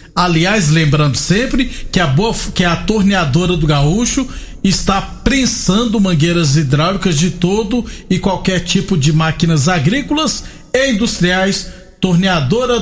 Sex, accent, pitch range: male, Brazilian, 170-215 Hz